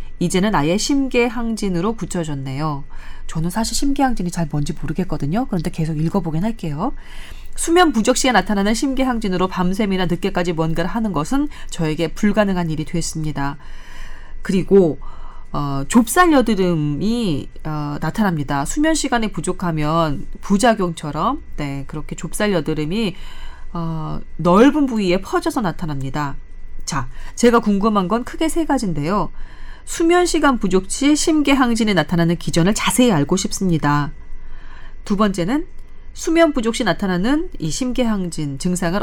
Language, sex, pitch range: Korean, female, 160-245 Hz